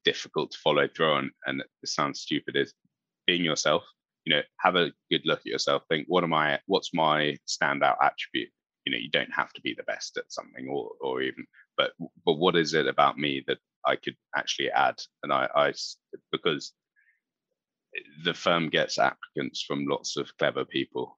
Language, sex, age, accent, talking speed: English, male, 20-39, British, 190 wpm